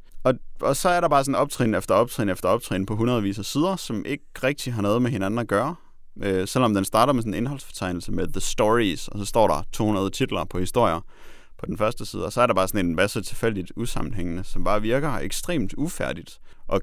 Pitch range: 95-125 Hz